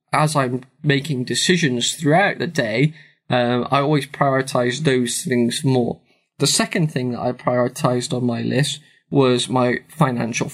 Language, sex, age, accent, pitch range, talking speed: English, male, 10-29, British, 125-150 Hz, 150 wpm